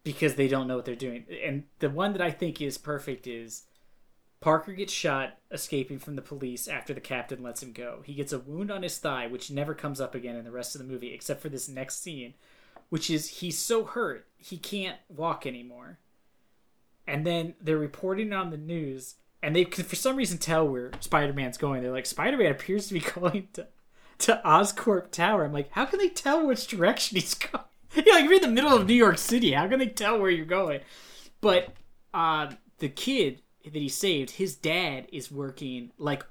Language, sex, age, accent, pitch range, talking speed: English, male, 20-39, American, 135-185 Hz, 210 wpm